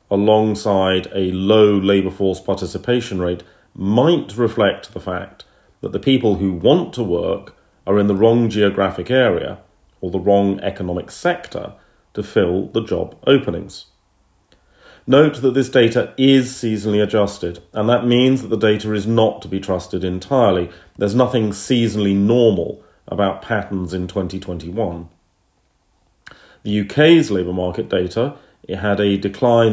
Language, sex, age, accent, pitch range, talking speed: English, male, 40-59, British, 95-115 Hz, 140 wpm